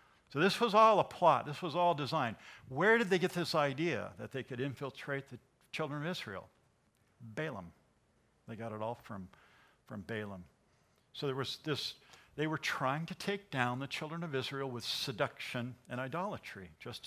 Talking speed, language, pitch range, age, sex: 180 wpm, English, 115-165 Hz, 60-79, male